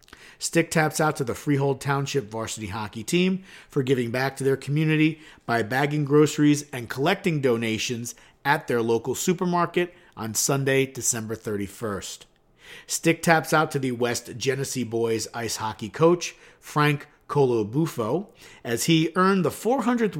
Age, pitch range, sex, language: 50-69, 120-160 Hz, male, English